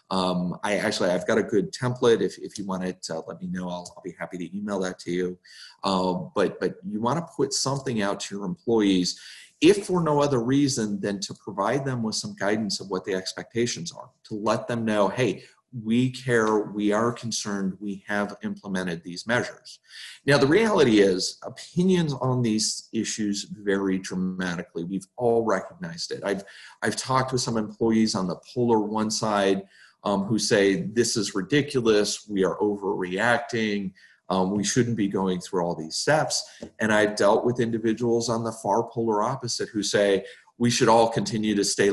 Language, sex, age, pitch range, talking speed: English, male, 30-49, 95-120 Hz, 185 wpm